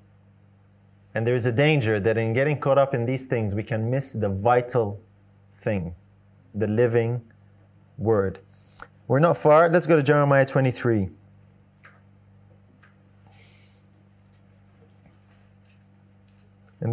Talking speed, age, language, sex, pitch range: 110 wpm, 30-49, English, male, 100-160 Hz